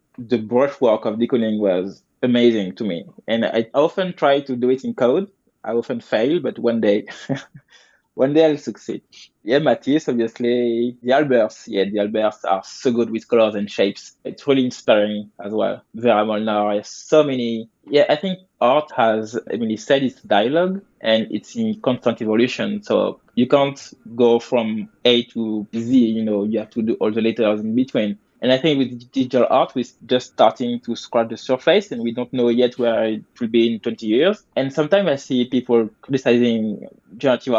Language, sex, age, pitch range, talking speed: English, male, 20-39, 110-135 Hz, 190 wpm